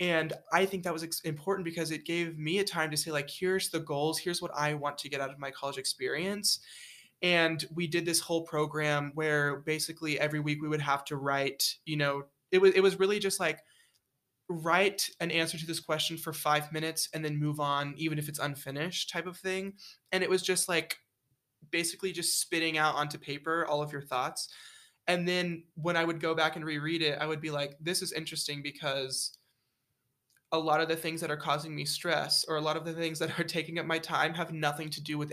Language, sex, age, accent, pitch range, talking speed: English, male, 20-39, American, 145-170 Hz, 225 wpm